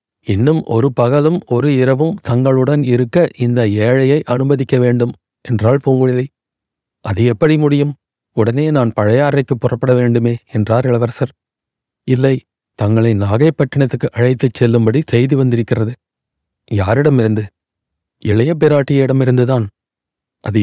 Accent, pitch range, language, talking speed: native, 115-140 Hz, Tamil, 95 wpm